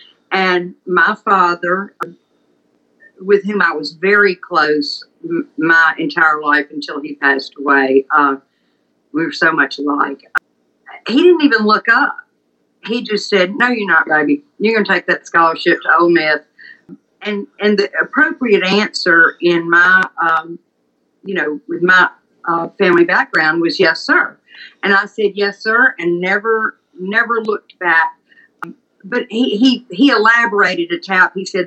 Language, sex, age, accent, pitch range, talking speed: English, female, 50-69, American, 165-210 Hz, 150 wpm